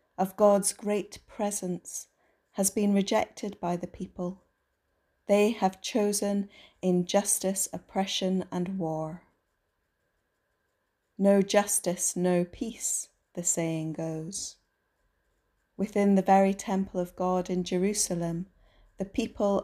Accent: British